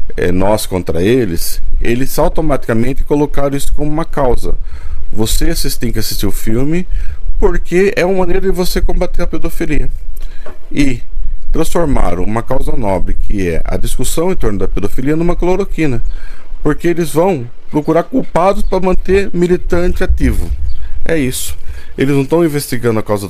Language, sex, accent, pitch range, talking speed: Portuguese, male, Brazilian, 95-155 Hz, 145 wpm